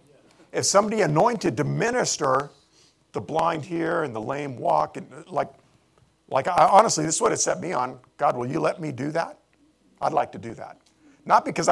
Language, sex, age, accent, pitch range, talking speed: English, male, 50-69, American, 125-185 Hz, 195 wpm